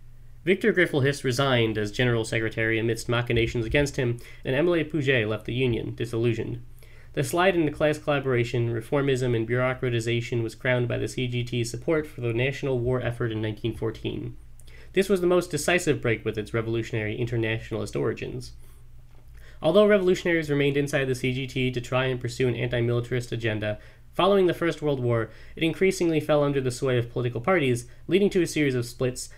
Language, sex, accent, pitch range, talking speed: English, male, American, 115-150 Hz, 165 wpm